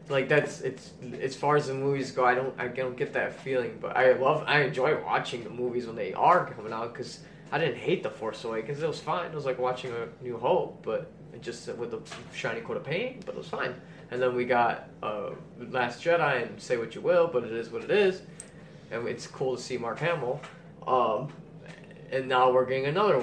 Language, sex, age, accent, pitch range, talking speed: English, male, 20-39, American, 120-155 Hz, 230 wpm